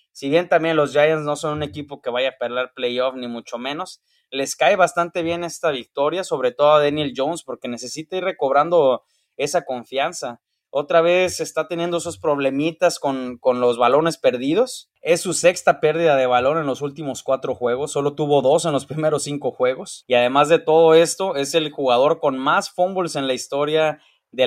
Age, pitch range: 20-39, 130-165 Hz